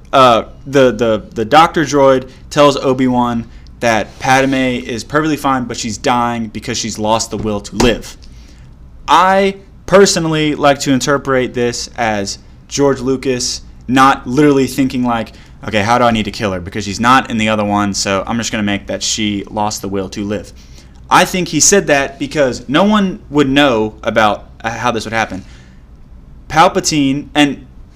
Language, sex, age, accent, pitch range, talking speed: English, male, 20-39, American, 100-135 Hz, 170 wpm